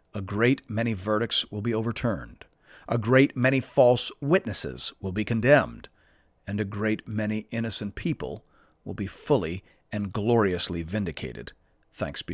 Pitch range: 110-150 Hz